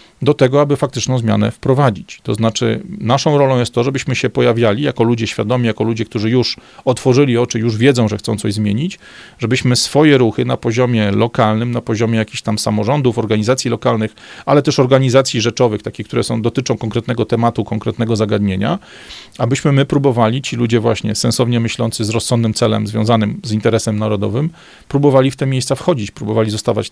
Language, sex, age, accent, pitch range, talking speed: Polish, male, 40-59, native, 110-130 Hz, 170 wpm